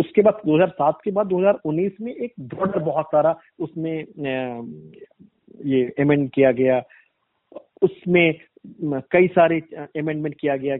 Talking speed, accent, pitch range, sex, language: 120 wpm, native, 130-155 Hz, male, Hindi